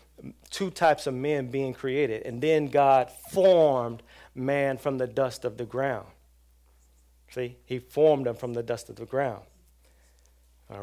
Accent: American